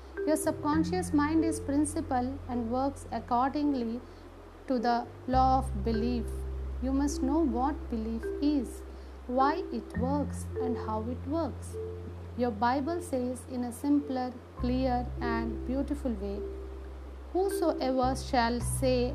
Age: 50-69